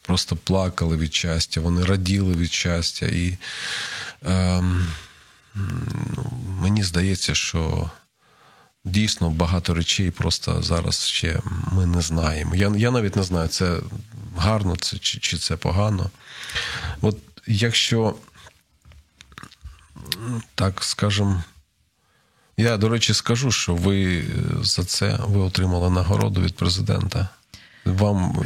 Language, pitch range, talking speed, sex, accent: Ukrainian, 85-105 Hz, 110 wpm, male, native